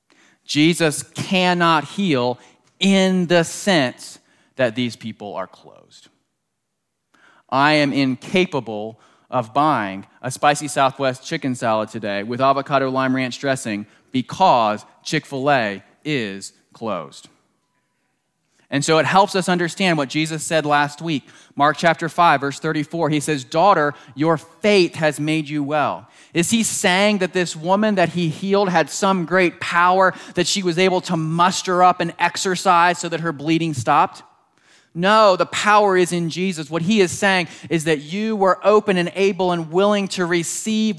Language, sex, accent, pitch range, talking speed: English, male, American, 145-185 Hz, 150 wpm